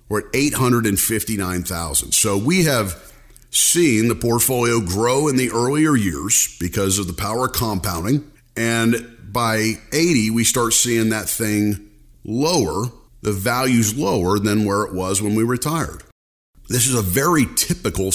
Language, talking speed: English, 145 wpm